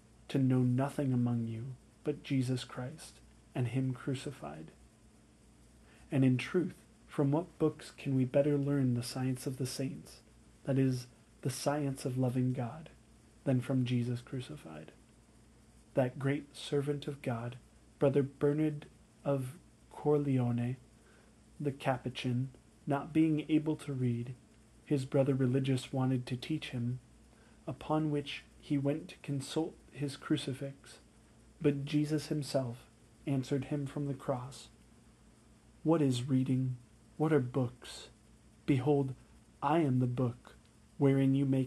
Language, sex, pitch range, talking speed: English, male, 120-140 Hz, 130 wpm